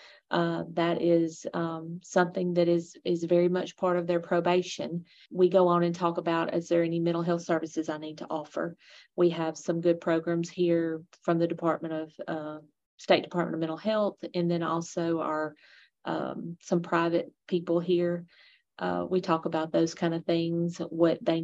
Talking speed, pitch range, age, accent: 180 wpm, 165-185 Hz, 40-59, American